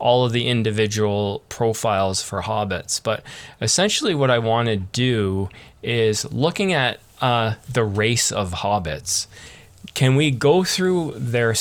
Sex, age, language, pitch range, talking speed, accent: male, 20-39, English, 105-125 Hz, 140 wpm, American